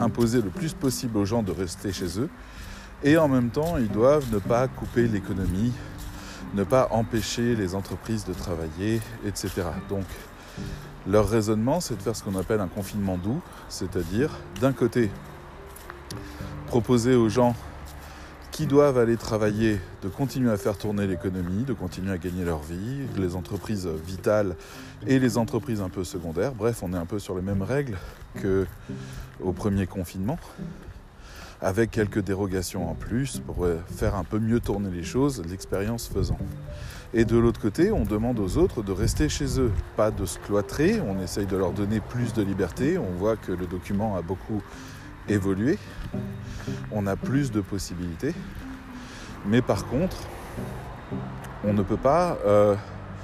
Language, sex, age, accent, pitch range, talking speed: French, male, 20-39, French, 95-120 Hz, 160 wpm